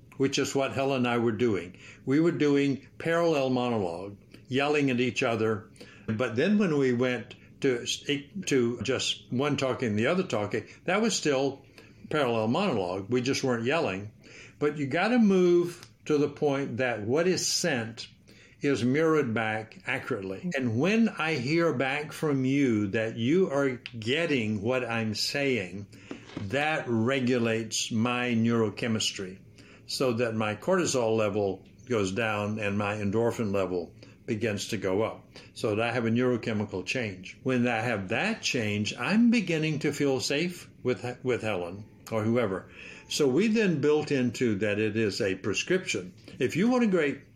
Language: English